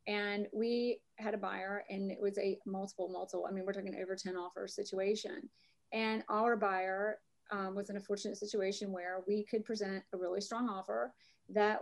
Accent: American